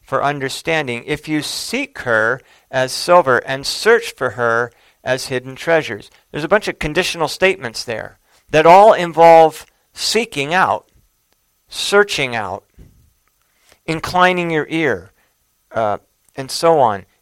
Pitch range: 115-160 Hz